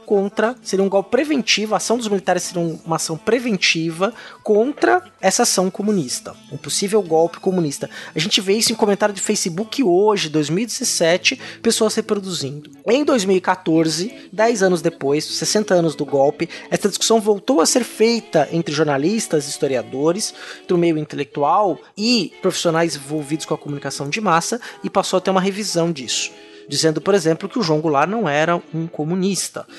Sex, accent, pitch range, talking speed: male, Brazilian, 160-220 Hz, 160 wpm